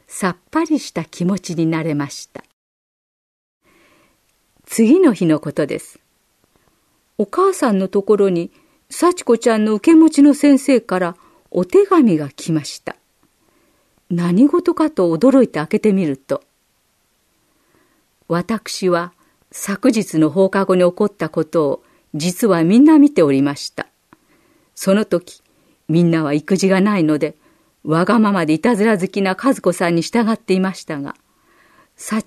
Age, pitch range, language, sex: 50-69, 160-240 Hz, Japanese, female